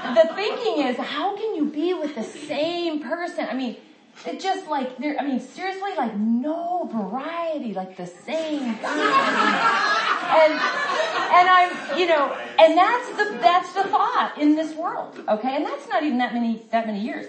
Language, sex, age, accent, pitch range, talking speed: English, female, 40-59, American, 210-320 Hz, 175 wpm